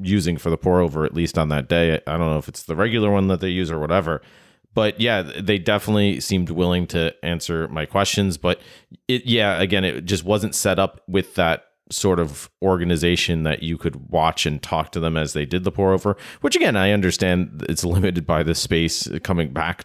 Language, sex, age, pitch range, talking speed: English, male, 30-49, 80-95 Hz, 220 wpm